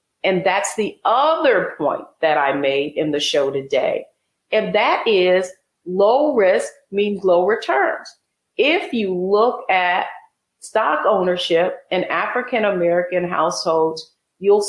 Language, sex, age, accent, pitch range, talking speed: English, female, 40-59, American, 175-255 Hz, 125 wpm